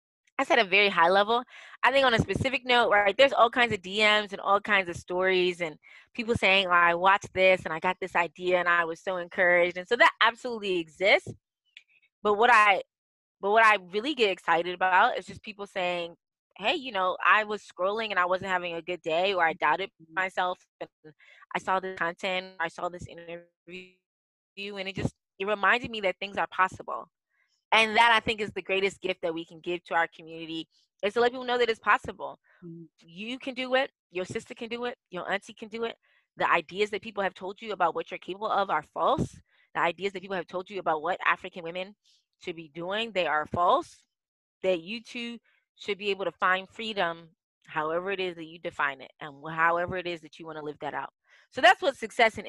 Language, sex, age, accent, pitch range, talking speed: English, female, 20-39, American, 170-210 Hz, 225 wpm